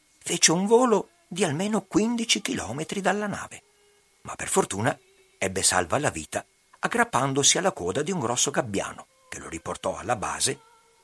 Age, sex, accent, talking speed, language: 50-69, male, native, 150 wpm, Italian